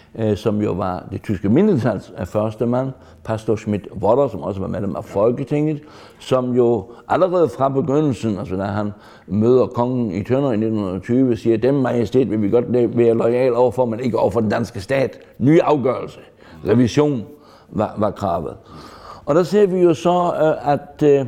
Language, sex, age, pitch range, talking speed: Danish, male, 60-79, 110-135 Hz, 170 wpm